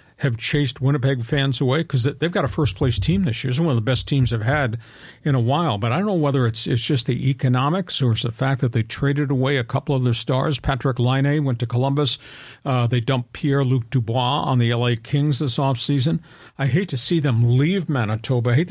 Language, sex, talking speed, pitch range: English, male, 235 wpm, 120-145 Hz